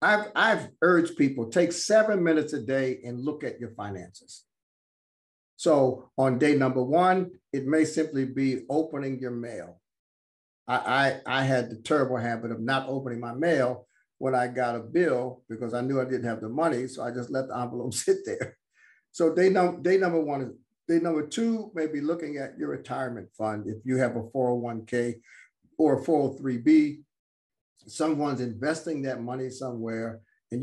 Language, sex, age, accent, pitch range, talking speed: English, male, 50-69, American, 125-160 Hz, 175 wpm